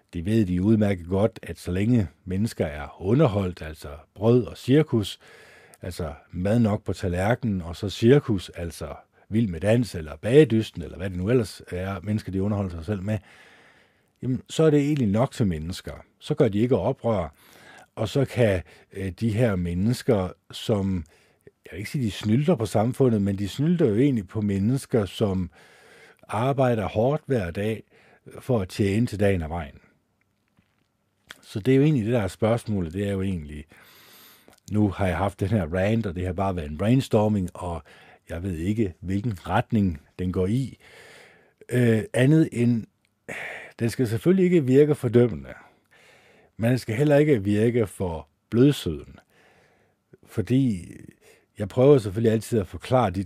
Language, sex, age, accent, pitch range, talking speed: Danish, male, 50-69, native, 95-120 Hz, 170 wpm